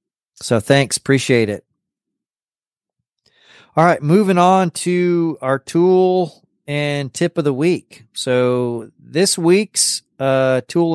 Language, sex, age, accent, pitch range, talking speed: English, male, 30-49, American, 125-165 Hz, 115 wpm